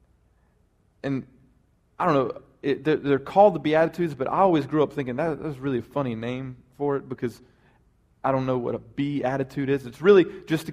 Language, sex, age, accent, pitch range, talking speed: English, male, 30-49, American, 130-180 Hz, 215 wpm